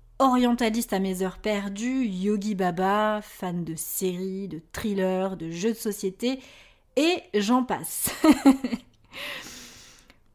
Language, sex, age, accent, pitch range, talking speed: French, female, 30-49, French, 195-260 Hz, 110 wpm